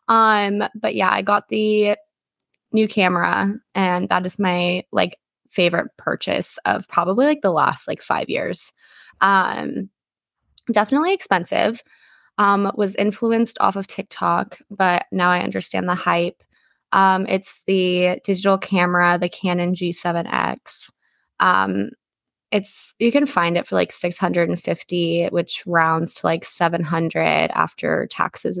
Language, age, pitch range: English, 20-39, 175-205 Hz